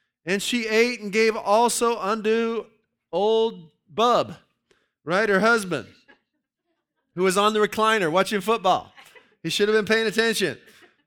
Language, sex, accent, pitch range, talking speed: English, male, American, 165-215 Hz, 135 wpm